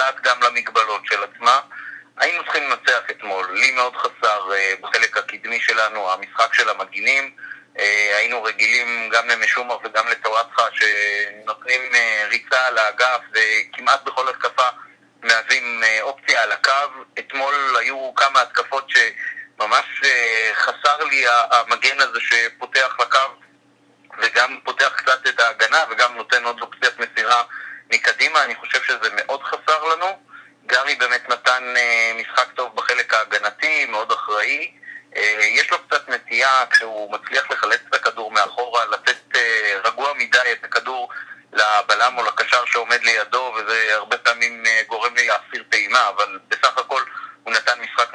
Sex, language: male, Hebrew